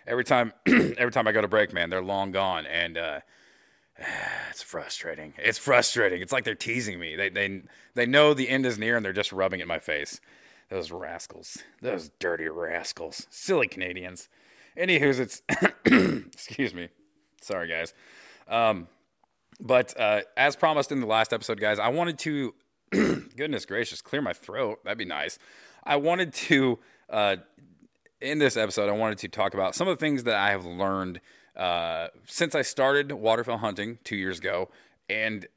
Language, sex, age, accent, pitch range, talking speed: English, male, 30-49, American, 100-135 Hz, 175 wpm